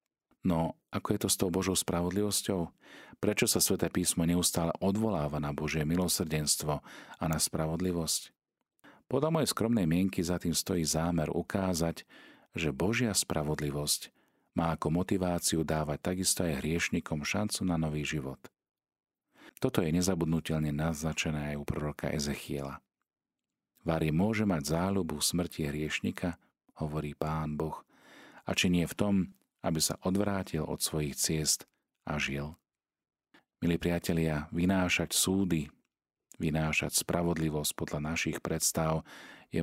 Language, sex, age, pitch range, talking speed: Slovak, male, 40-59, 75-90 Hz, 125 wpm